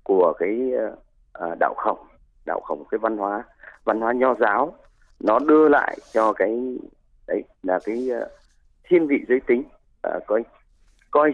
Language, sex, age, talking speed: Vietnamese, male, 30-49, 150 wpm